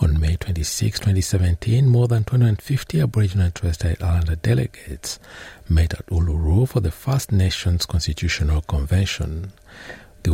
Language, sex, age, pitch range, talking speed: English, male, 60-79, 75-100 Hz, 135 wpm